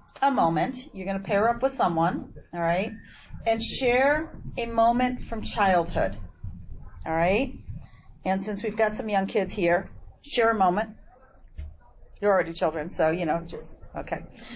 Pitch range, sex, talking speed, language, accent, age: 180-240 Hz, female, 155 wpm, English, American, 40-59